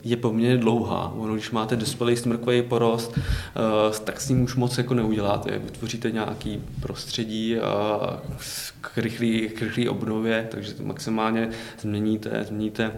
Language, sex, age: Czech, male, 20-39